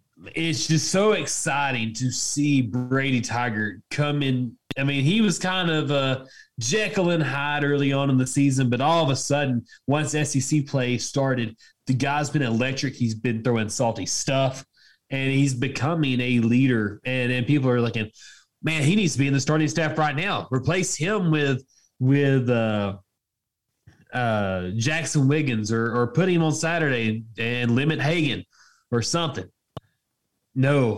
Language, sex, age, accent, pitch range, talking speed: English, male, 20-39, American, 110-140 Hz, 165 wpm